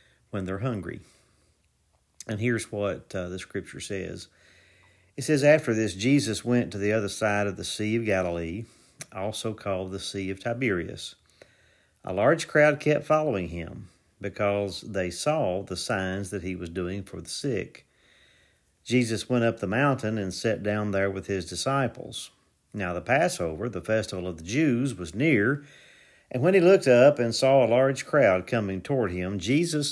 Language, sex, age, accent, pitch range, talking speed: English, male, 50-69, American, 95-125 Hz, 170 wpm